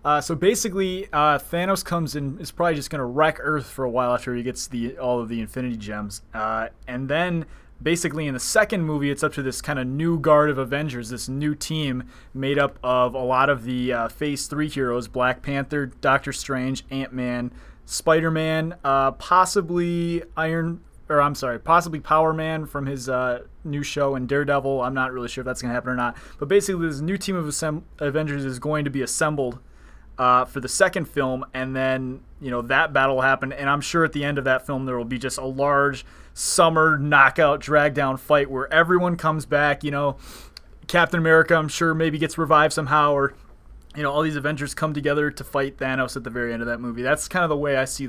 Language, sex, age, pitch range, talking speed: English, male, 20-39, 130-160 Hz, 220 wpm